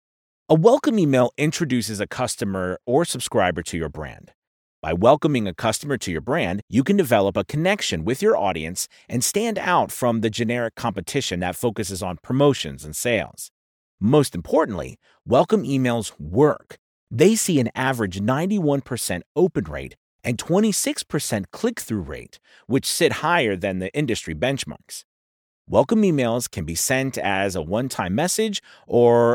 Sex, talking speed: male, 145 wpm